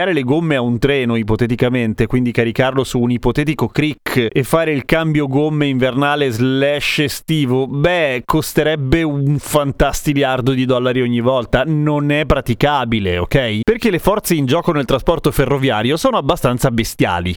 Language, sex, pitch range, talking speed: Italian, male, 130-170 Hz, 150 wpm